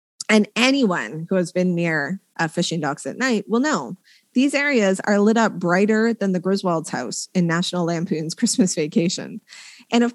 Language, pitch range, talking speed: English, 170-230 Hz, 175 wpm